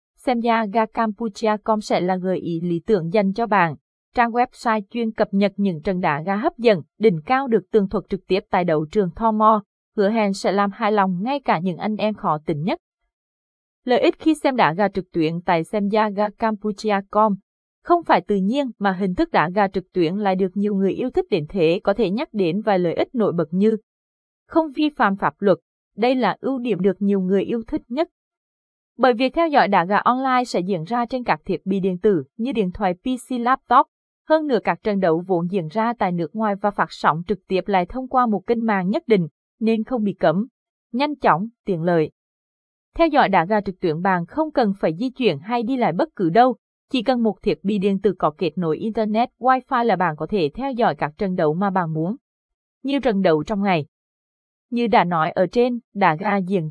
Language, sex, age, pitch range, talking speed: Vietnamese, female, 20-39, 185-235 Hz, 230 wpm